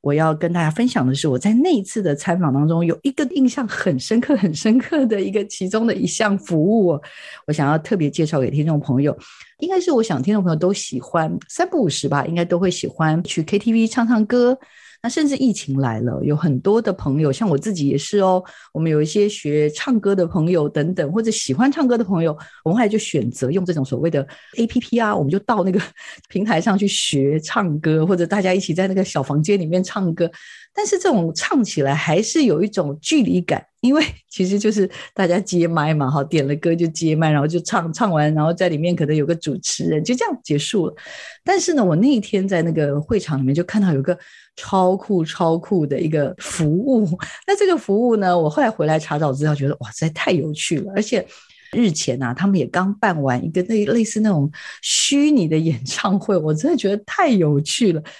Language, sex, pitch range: Chinese, female, 155-220 Hz